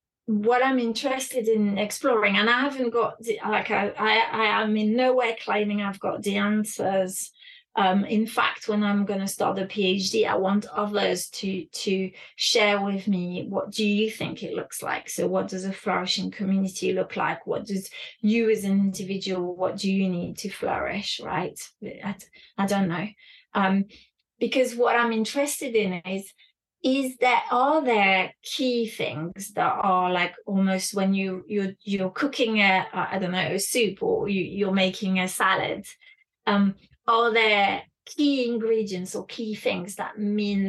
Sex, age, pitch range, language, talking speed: female, 30-49, 190-225 Hz, English, 170 wpm